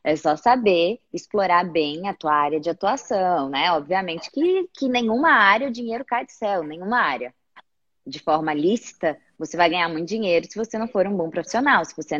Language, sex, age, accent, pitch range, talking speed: Portuguese, female, 20-39, Brazilian, 155-210 Hz, 195 wpm